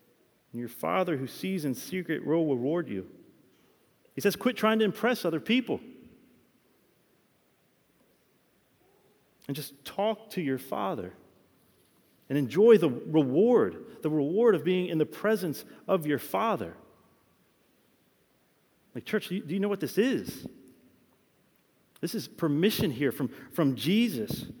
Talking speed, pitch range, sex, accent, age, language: 130 wpm, 145-195 Hz, male, American, 40-59, English